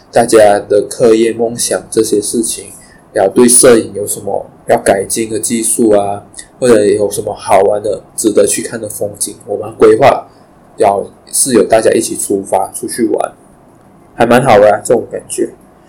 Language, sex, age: Chinese, male, 20-39